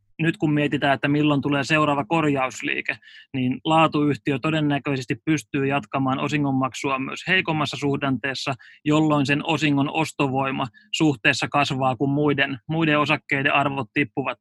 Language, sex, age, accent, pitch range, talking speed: Finnish, male, 20-39, native, 135-150 Hz, 125 wpm